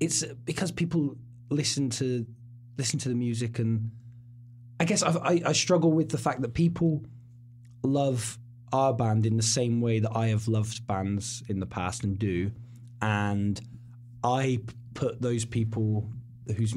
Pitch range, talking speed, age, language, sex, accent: 115-130 Hz, 155 wpm, 20-39, English, male, British